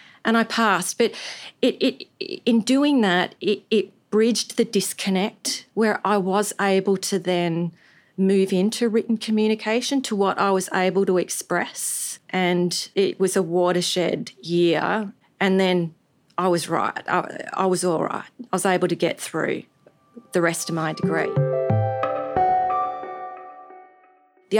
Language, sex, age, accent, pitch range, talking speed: English, female, 40-59, Australian, 170-215 Hz, 140 wpm